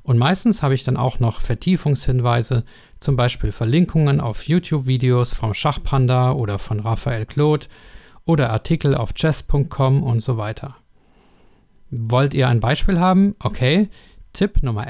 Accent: German